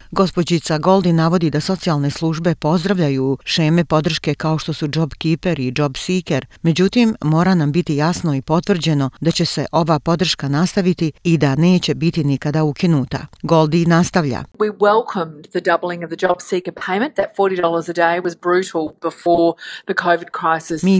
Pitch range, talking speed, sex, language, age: 150-175 Hz, 110 wpm, female, English, 40-59